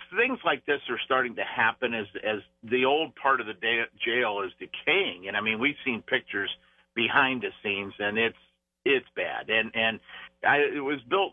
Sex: male